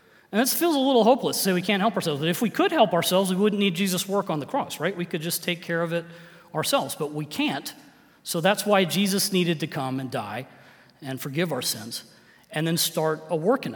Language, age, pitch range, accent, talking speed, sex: English, 30-49, 140-175 Hz, American, 250 wpm, male